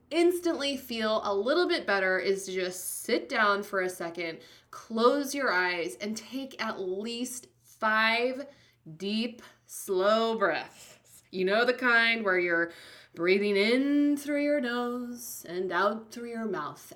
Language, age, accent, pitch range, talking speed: English, 20-39, American, 190-245 Hz, 145 wpm